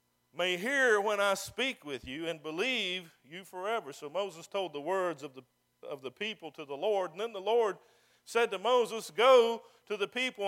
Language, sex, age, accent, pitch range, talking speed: English, male, 50-69, American, 165-235 Hz, 200 wpm